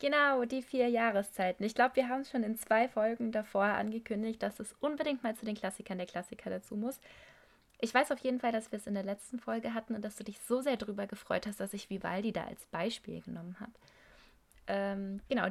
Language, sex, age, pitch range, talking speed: German, female, 20-39, 195-240 Hz, 220 wpm